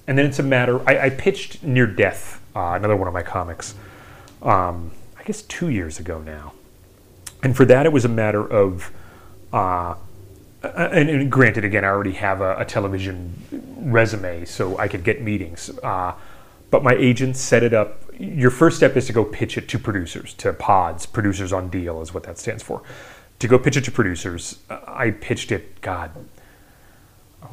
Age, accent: 30-49, American